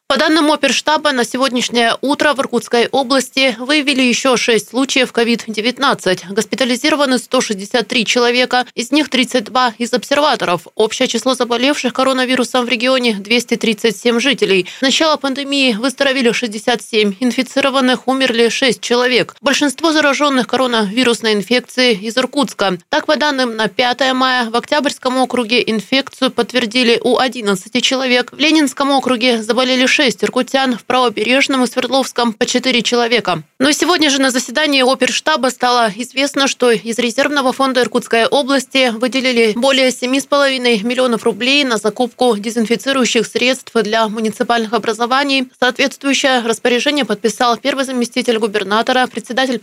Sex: female